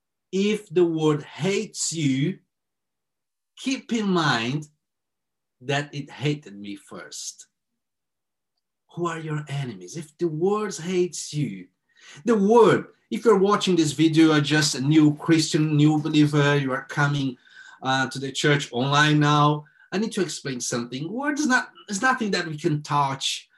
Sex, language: male, English